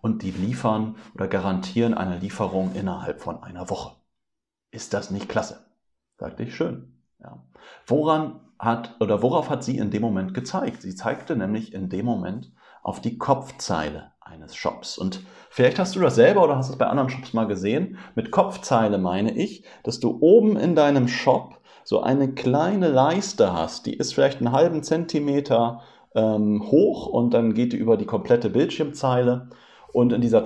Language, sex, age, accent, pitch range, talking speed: German, male, 40-59, German, 100-130 Hz, 175 wpm